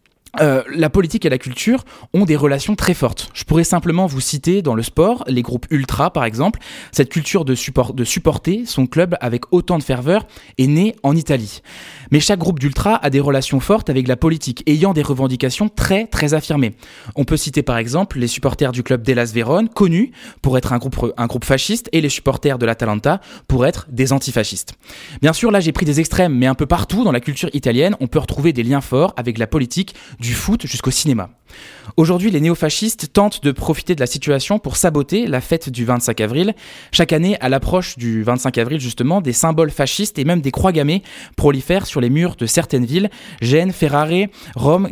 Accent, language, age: French, French, 20-39